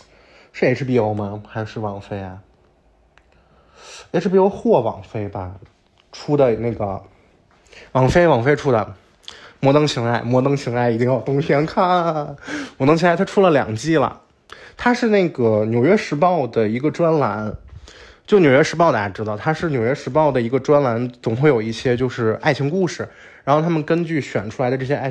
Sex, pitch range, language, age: male, 115-160 Hz, Chinese, 20-39